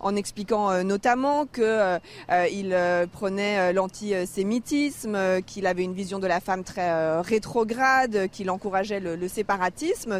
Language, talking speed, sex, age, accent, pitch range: French, 155 wpm, female, 30-49, French, 200-255 Hz